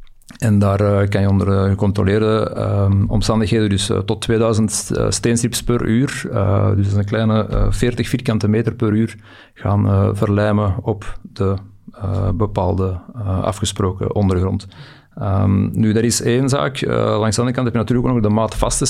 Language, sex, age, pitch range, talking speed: Dutch, male, 40-59, 100-120 Hz, 160 wpm